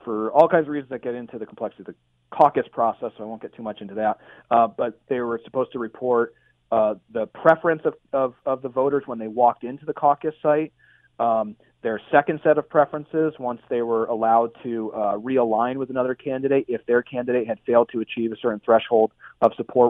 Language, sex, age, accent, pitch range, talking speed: English, male, 40-59, American, 115-145 Hz, 215 wpm